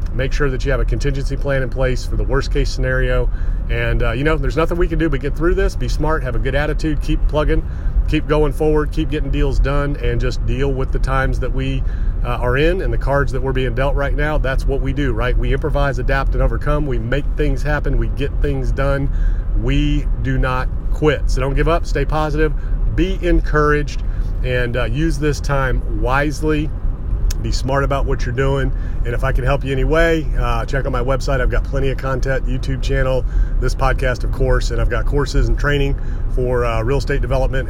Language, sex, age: English, male, 40-59